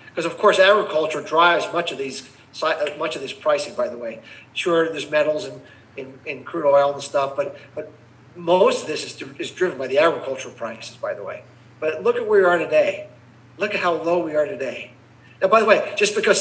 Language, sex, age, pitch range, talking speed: English, male, 40-59, 140-180 Hz, 225 wpm